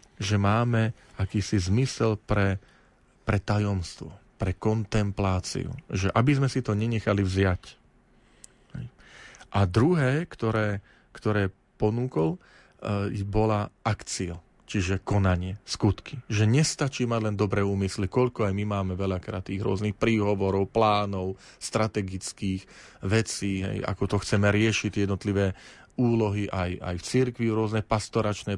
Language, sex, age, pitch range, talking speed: Slovak, male, 40-59, 95-110 Hz, 120 wpm